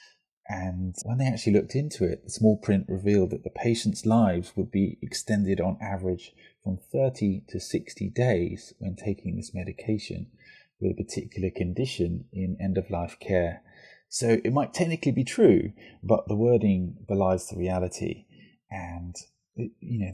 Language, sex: English, male